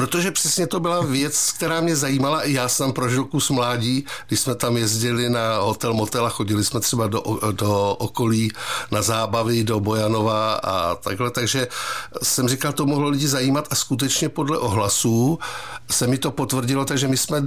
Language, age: Czech, 60-79